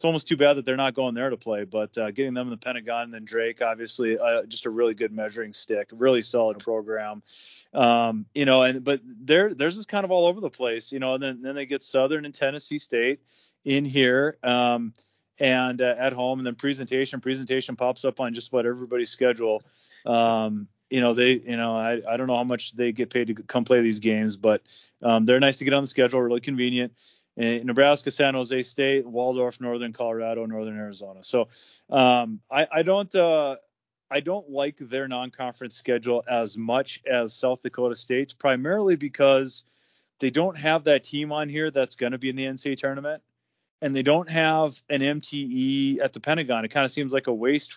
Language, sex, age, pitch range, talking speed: English, male, 30-49, 120-140 Hz, 210 wpm